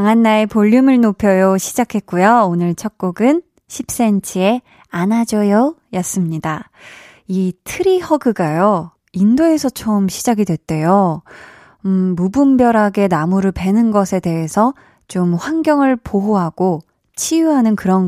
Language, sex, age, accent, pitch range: Korean, female, 20-39, native, 185-255 Hz